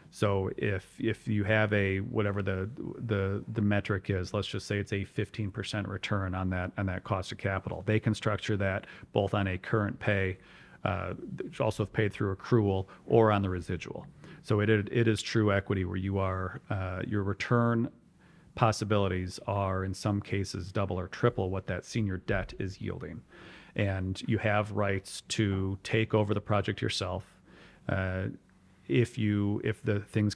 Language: English